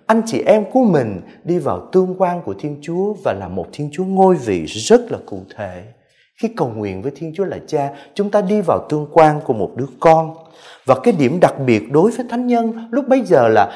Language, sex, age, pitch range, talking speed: Vietnamese, male, 30-49, 140-230 Hz, 235 wpm